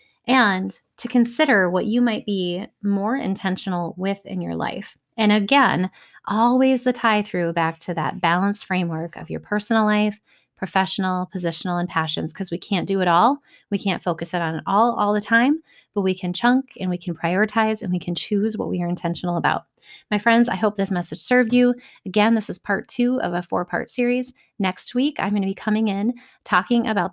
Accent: American